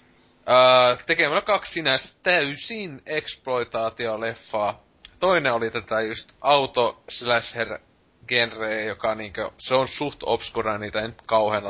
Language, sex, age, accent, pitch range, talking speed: Finnish, male, 20-39, native, 105-125 Hz, 110 wpm